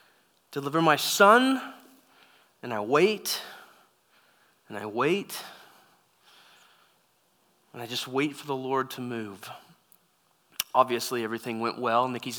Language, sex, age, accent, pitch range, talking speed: English, male, 30-49, American, 135-200 Hz, 110 wpm